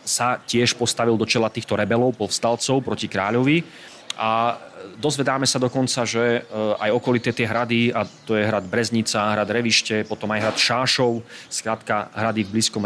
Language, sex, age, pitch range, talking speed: Slovak, male, 30-49, 110-130 Hz, 160 wpm